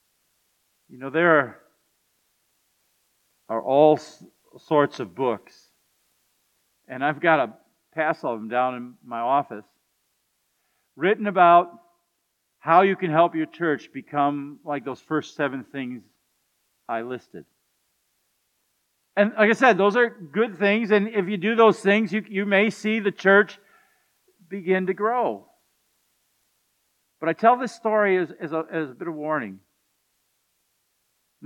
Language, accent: English, American